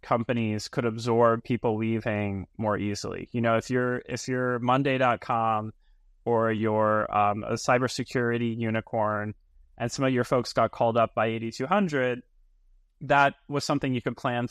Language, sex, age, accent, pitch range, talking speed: English, male, 20-39, American, 115-140 Hz, 150 wpm